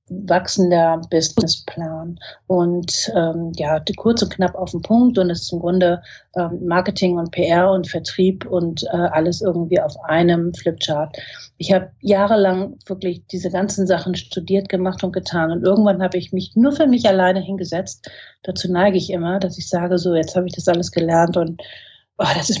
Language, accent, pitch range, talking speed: German, German, 175-200 Hz, 185 wpm